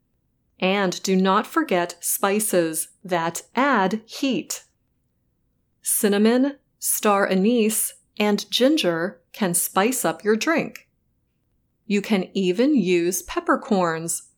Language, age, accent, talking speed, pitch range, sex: English, 30-49, American, 95 wpm, 180-240 Hz, female